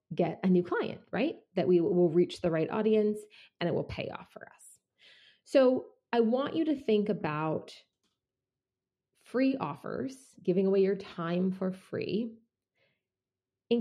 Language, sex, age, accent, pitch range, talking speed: English, female, 30-49, American, 175-240 Hz, 150 wpm